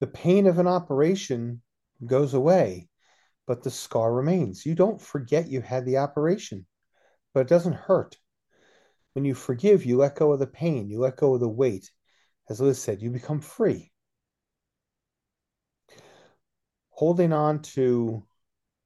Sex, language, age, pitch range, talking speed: male, English, 40-59, 115-160 Hz, 145 wpm